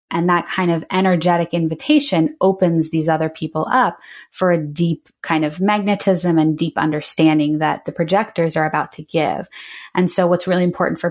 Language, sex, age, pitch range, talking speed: English, female, 20-39, 160-185 Hz, 180 wpm